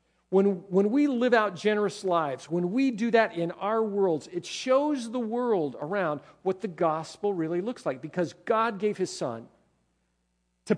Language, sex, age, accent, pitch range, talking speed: English, male, 50-69, American, 175-235 Hz, 175 wpm